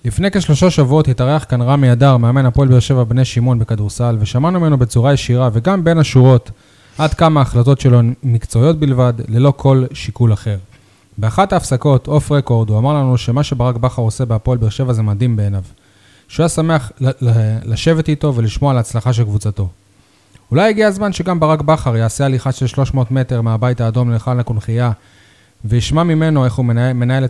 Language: Hebrew